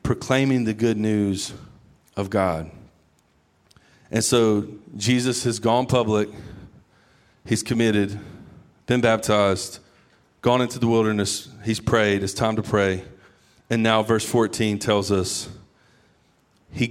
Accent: American